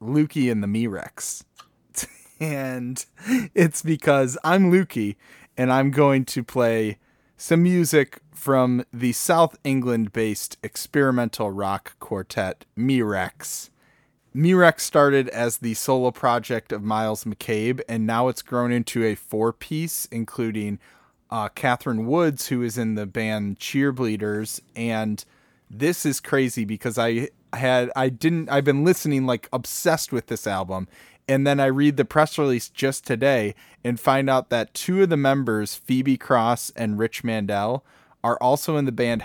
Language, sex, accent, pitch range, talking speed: English, male, American, 115-140 Hz, 145 wpm